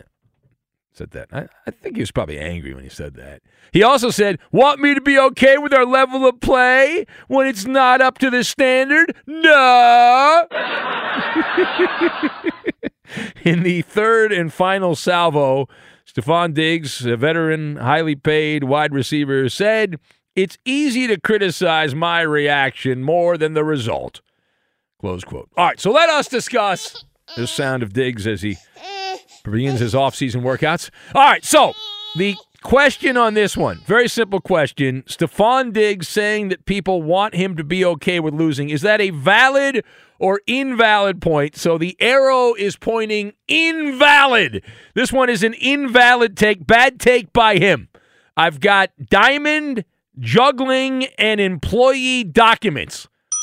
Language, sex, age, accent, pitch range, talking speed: English, male, 50-69, American, 150-255 Hz, 145 wpm